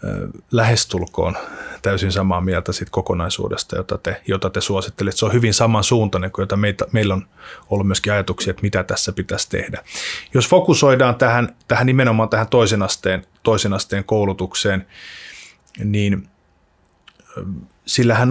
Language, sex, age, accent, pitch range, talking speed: Finnish, male, 20-39, native, 95-115 Hz, 130 wpm